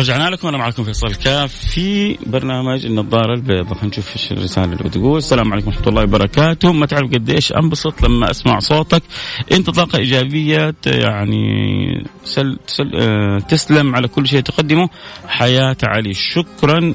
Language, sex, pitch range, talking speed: Arabic, male, 110-145 Hz, 150 wpm